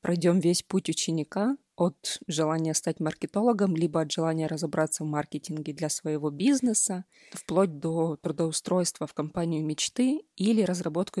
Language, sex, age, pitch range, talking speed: Russian, female, 20-39, 160-205 Hz, 135 wpm